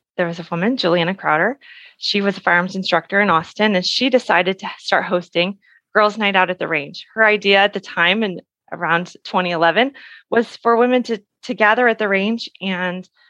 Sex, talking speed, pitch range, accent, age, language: female, 195 wpm, 180-230 Hz, American, 20-39, English